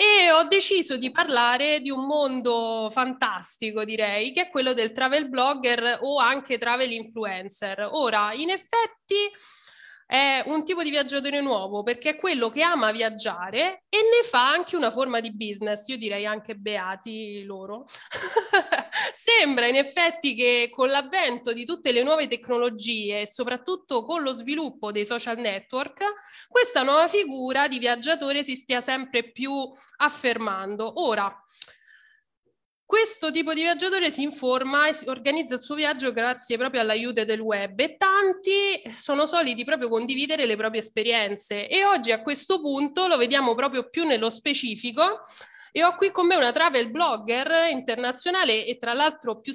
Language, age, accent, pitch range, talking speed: Italian, 20-39, native, 230-320 Hz, 155 wpm